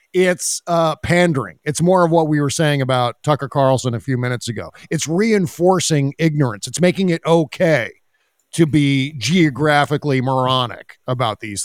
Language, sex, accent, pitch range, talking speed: English, male, American, 125-165 Hz, 155 wpm